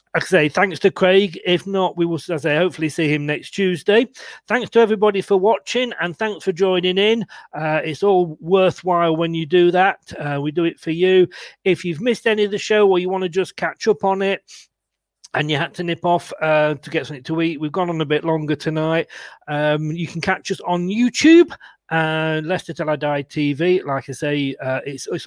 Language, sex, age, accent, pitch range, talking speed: English, male, 40-59, British, 155-190 Hz, 230 wpm